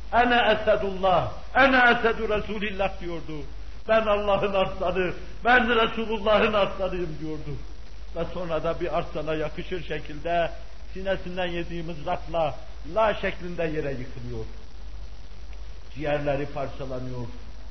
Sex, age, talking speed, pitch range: male, 60-79, 100 wpm, 155-215 Hz